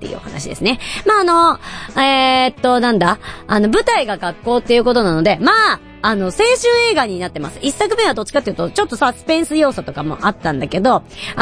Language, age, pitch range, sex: Japanese, 40-59, 195-325 Hz, male